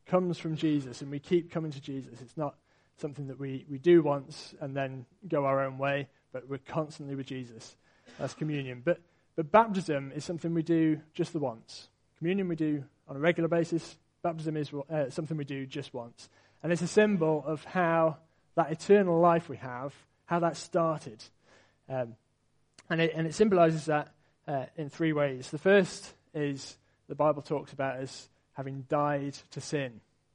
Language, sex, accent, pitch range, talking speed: English, male, British, 140-165 Hz, 180 wpm